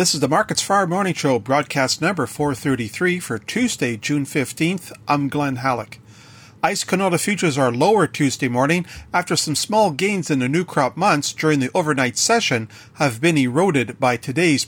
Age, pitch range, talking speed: 40-59, 130-165 Hz, 185 wpm